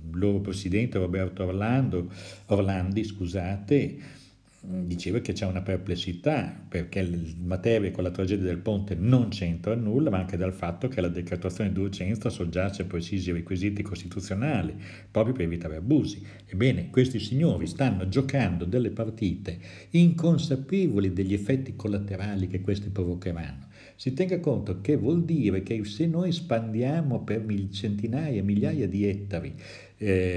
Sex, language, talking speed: male, Italian, 140 wpm